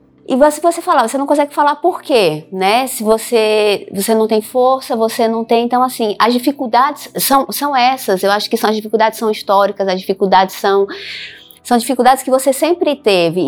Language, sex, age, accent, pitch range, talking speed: Portuguese, female, 20-39, Brazilian, 190-255 Hz, 195 wpm